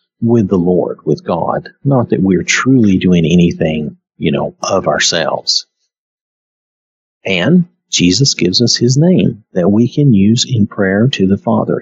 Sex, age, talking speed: male, 50-69, 150 wpm